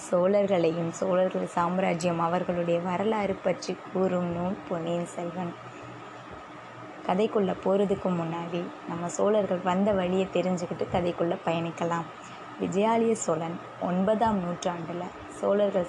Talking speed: 95 wpm